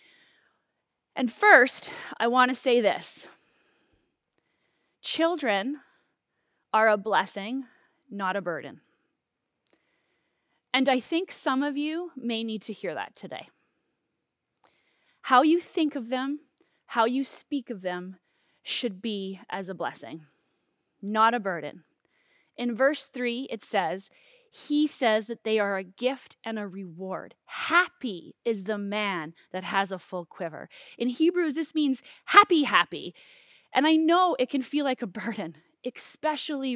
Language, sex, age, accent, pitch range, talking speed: English, female, 20-39, American, 215-295 Hz, 135 wpm